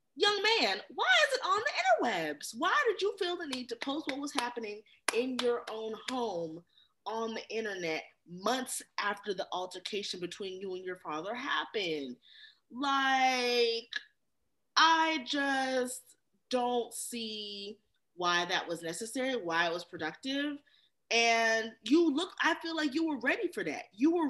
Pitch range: 225-350 Hz